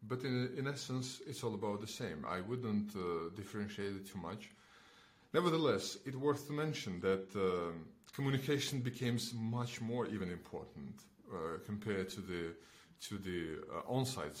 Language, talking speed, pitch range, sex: English, 155 wpm, 95-115 Hz, male